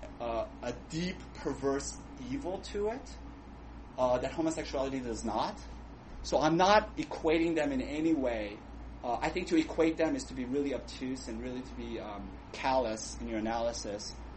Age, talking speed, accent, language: 30-49, 165 wpm, American, English